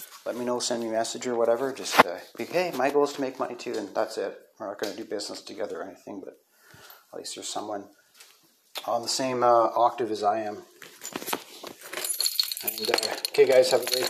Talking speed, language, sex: 215 wpm, English, male